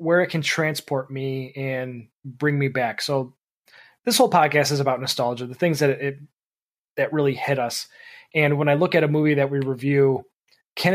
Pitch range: 135-170 Hz